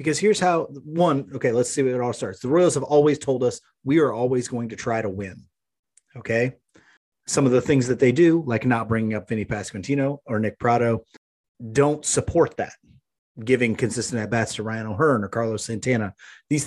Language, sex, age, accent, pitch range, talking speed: English, male, 30-49, American, 115-150 Hz, 200 wpm